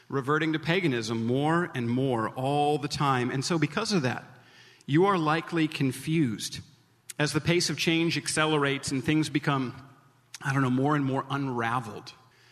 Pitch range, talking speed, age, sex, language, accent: 160-200 Hz, 165 wpm, 40-59, male, English, American